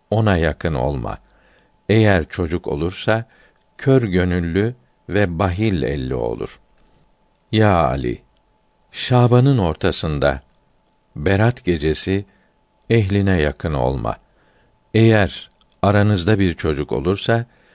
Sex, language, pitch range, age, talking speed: male, Turkish, 90-110 Hz, 50-69, 90 wpm